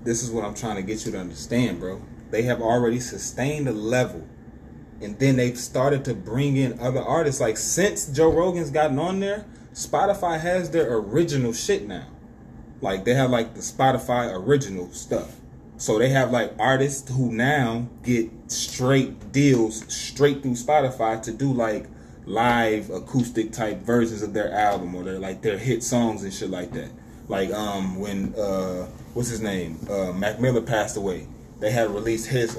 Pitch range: 110-150 Hz